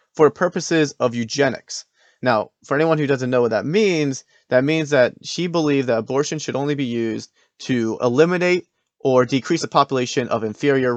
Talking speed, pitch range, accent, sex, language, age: 175 wpm, 115-150 Hz, American, male, English, 30-49